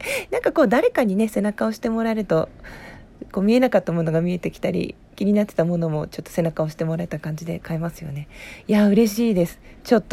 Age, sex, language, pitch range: 40-59, female, Japanese, 165-215 Hz